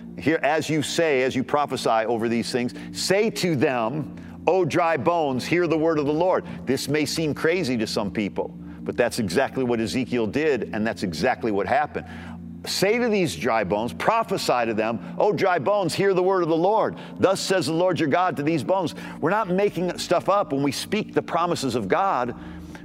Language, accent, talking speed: English, American, 205 wpm